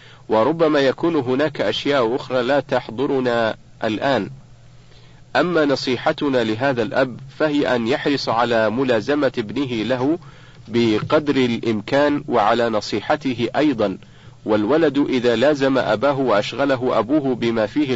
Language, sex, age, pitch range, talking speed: Arabic, male, 50-69, 115-140 Hz, 105 wpm